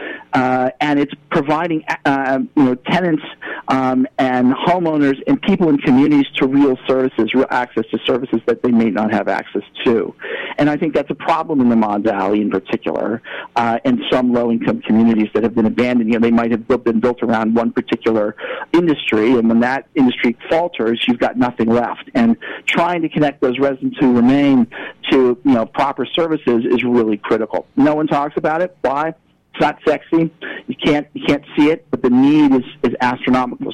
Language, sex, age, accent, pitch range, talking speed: English, male, 50-69, American, 125-165 Hz, 190 wpm